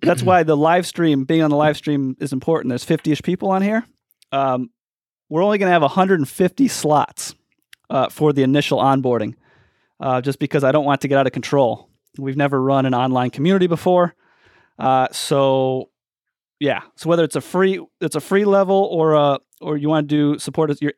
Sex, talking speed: male, 200 wpm